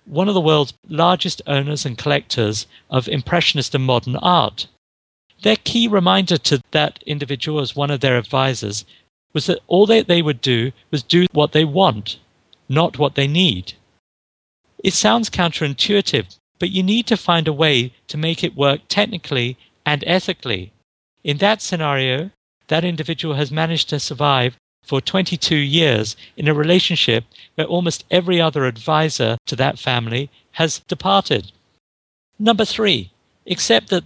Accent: British